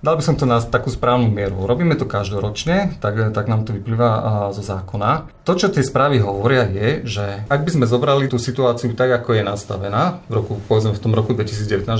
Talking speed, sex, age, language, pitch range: 210 wpm, male, 40-59, Slovak, 110-130 Hz